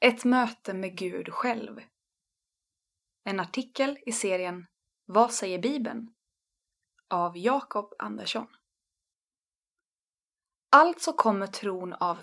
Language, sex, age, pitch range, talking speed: Swedish, female, 20-39, 195-265 Hz, 95 wpm